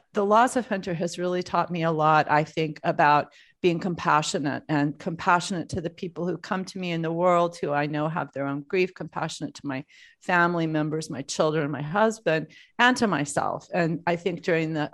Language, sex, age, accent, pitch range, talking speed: English, female, 40-59, American, 150-185 Hz, 205 wpm